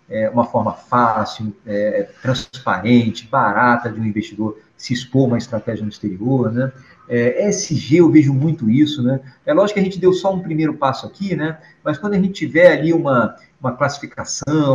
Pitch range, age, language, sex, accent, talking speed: 125-165 Hz, 50-69, Portuguese, male, Brazilian, 175 wpm